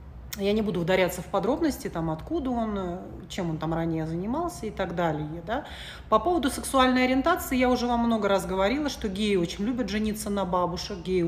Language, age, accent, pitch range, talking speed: Russian, 30-49, native, 185-250 Hz, 190 wpm